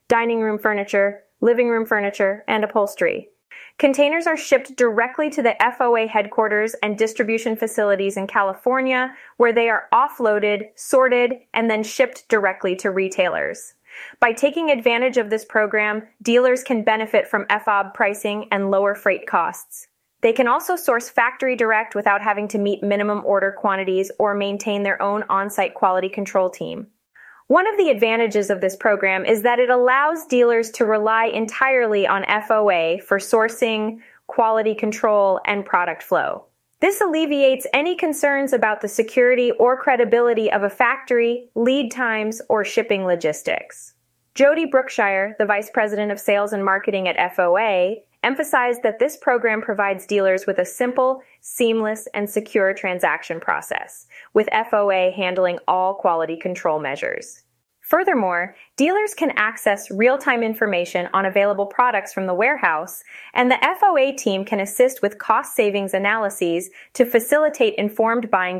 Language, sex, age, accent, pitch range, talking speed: English, female, 20-39, American, 200-245 Hz, 145 wpm